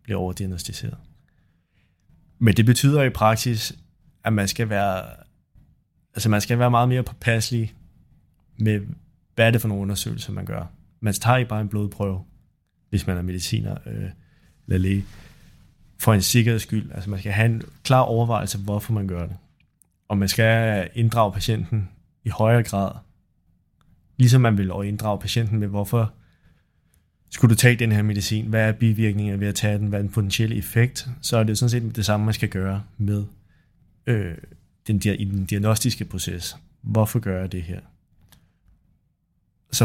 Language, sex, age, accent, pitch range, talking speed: Danish, male, 20-39, native, 100-115 Hz, 170 wpm